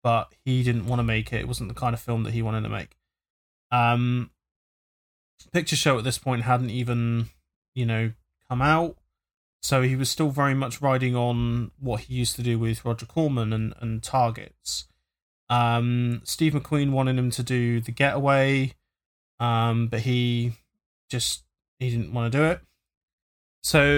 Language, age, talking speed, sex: English, 20-39, 175 wpm, male